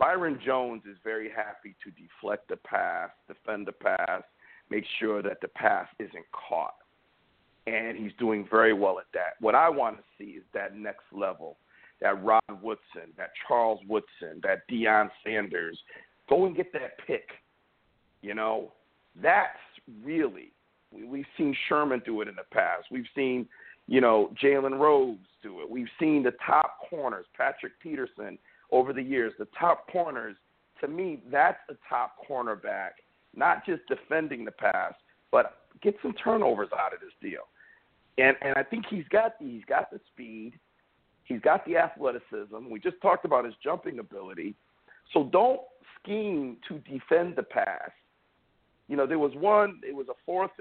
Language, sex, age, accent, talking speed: English, male, 50-69, American, 165 wpm